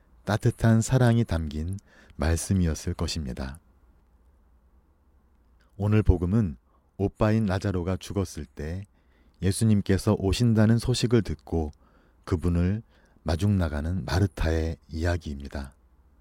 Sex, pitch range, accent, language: male, 75-95 Hz, native, Korean